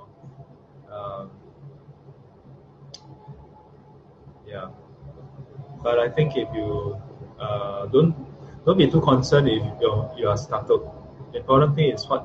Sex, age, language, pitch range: male, 20-39, English, 120-145 Hz